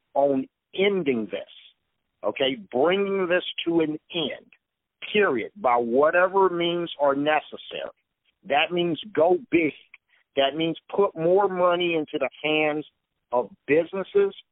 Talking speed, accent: 120 wpm, American